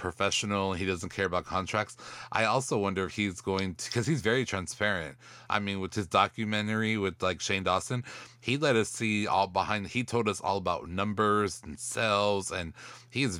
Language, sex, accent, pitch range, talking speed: English, male, American, 95-115 Hz, 190 wpm